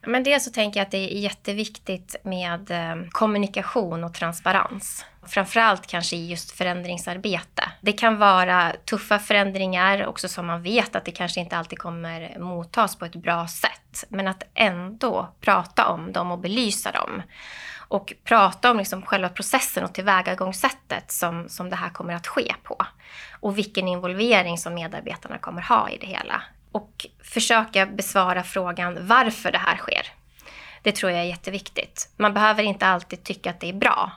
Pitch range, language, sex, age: 175-210 Hz, Swedish, female, 20-39